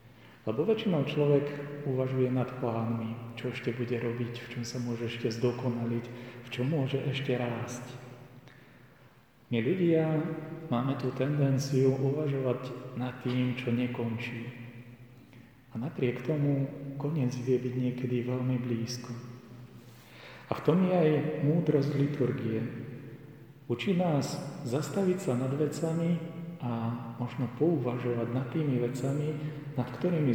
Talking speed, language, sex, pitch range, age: 120 wpm, Slovak, male, 120-140 Hz, 40-59